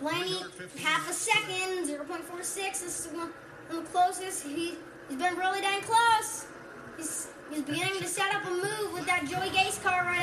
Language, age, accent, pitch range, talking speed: English, 20-39, American, 335-440 Hz, 200 wpm